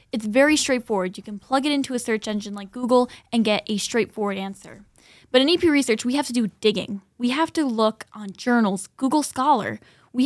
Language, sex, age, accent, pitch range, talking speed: English, female, 10-29, American, 215-265 Hz, 210 wpm